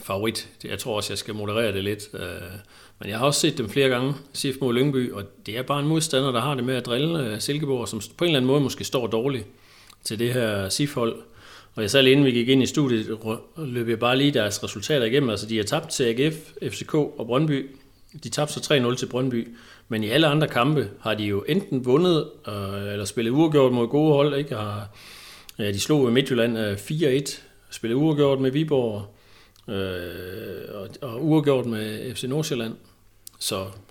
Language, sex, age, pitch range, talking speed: Danish, male, 40-59, 105-140 Hz, 195 wpm